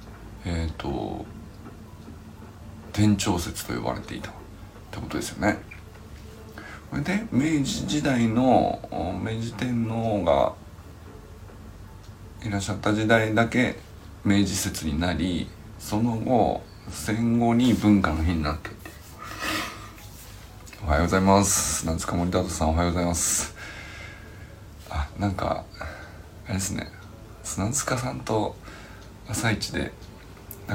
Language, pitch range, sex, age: Japanese, 85-110 Hz, male, 60-79